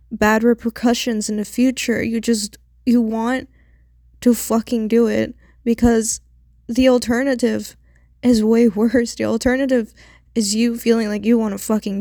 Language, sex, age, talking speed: English, female, 10-29, 145 wpm